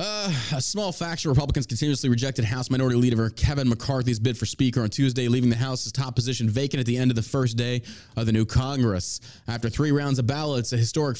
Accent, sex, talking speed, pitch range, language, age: American, male, 220 wpm, 110-140 Hz, English, 20-39